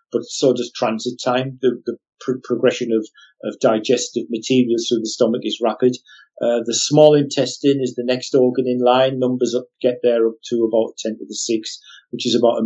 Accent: British